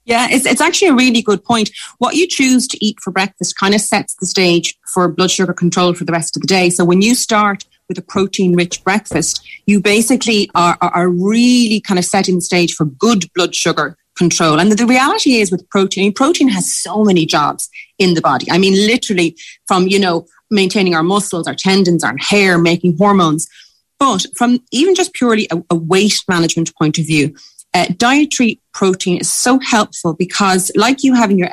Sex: female